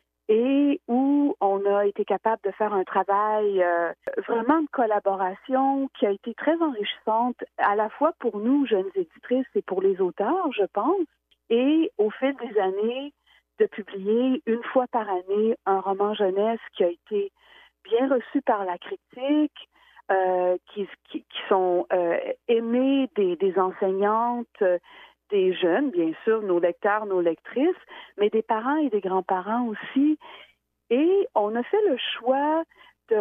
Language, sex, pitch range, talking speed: French, female, 205-295 Hz, 160 wpm